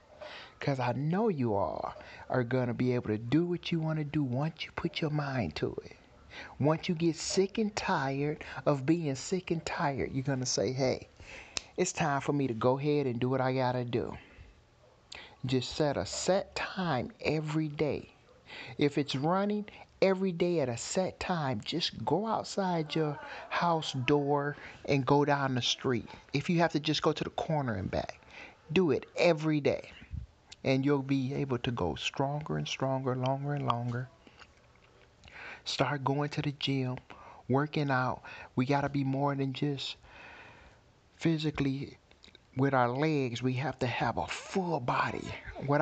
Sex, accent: male, American